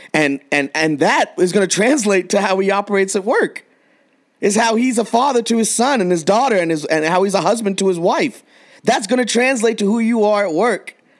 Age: 30-49